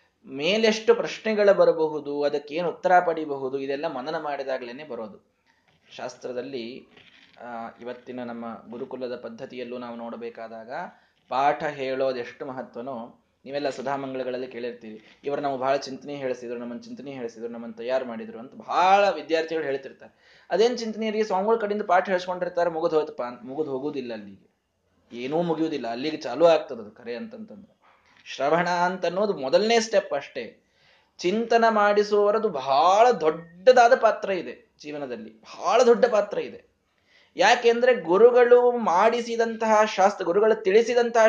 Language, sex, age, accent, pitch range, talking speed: Kannada, male, 20-39, native, 135-215 Hz, 115 wpm